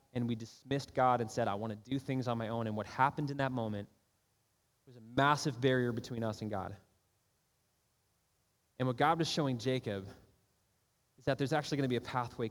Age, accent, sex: 20-39, American, male